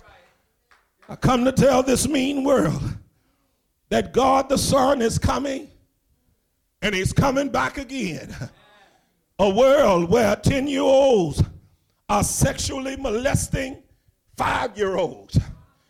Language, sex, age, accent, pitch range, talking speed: English, male, 50-69, American, 215-275 Hz, 100 wpm